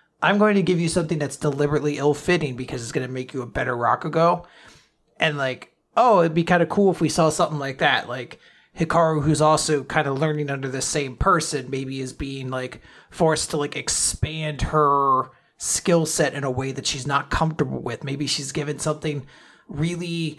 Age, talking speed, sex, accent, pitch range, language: 30-49, 195 wpm, male, American, 135-160 Hz, English